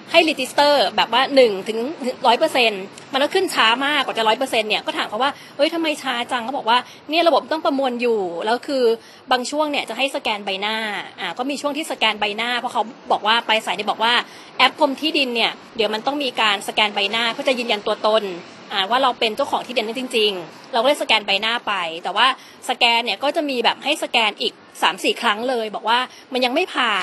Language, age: Thai, 20-39